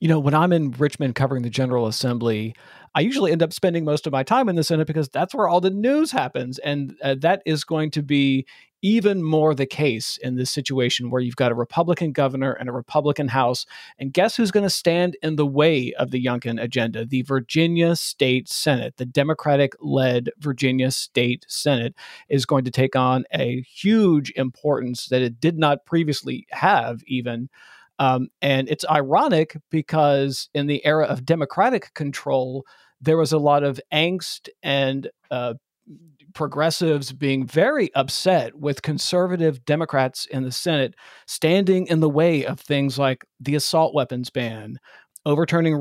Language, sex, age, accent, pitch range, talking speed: English, male, 40-59, American, 130-160 Hz, 170 wpm